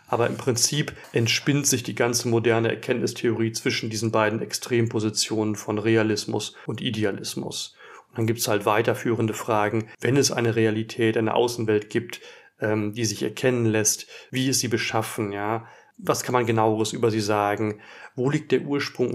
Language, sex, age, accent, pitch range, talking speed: German, male, 40-59, German, 110-125 Hz, 160 wpm